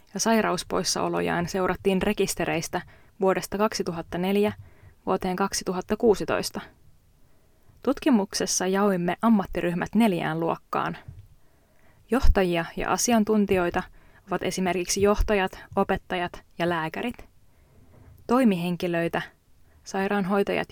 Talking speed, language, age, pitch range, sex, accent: 70 wpm, Finnish, 20-39, 160-205 Hz, female, native